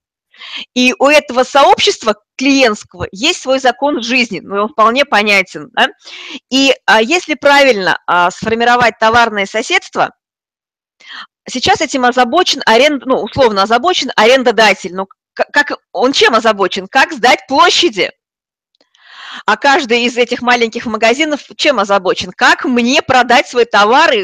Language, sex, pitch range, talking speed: Russian, female, 225-295 Hz, 125 wpm